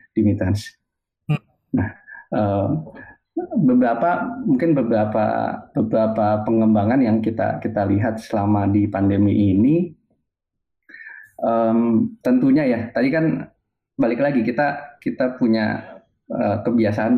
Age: 20-39